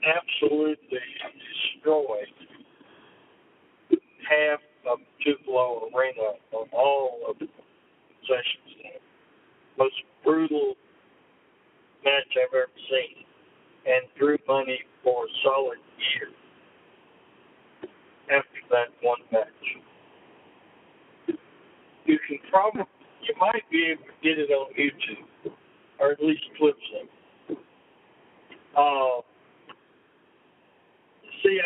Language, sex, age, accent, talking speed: English, male, 60-79, American, 90 wpm